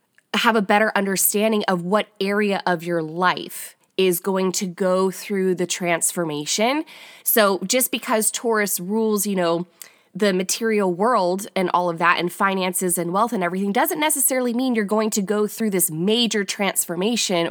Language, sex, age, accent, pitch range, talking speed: English, female, 20-39, American, 180-220 Hz, 165 wpm